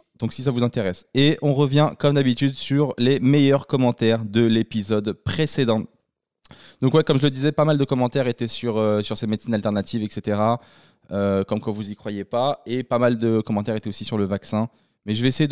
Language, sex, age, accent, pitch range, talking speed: French, male, 20-39, French, 110-145 Hz, 215 wpm